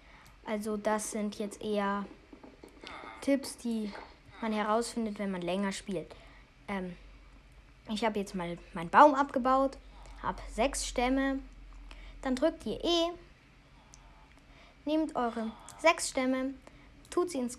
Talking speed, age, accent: 120 wpm, 20-39, German